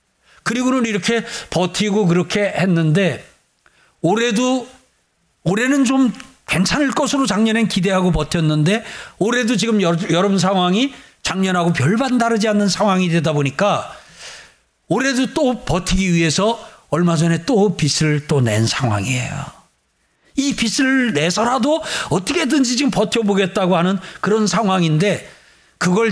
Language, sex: Korean, male